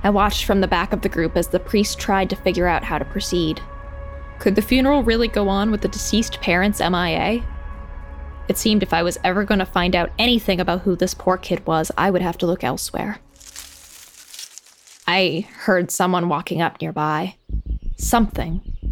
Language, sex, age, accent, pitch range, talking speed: English, female, 20-39, American, 165-205 Hz, 185 wpm